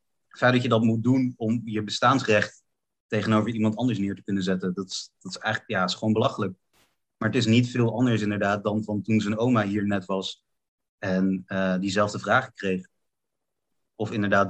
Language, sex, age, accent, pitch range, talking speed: Dutch, male, 30-49, Dutch, 95-110 Hz, 200 wpm